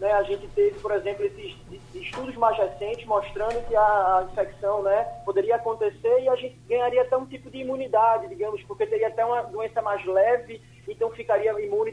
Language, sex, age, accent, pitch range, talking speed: Portuguese, male, 20-39, Brazilian, 200-300 Hz, 180 wpm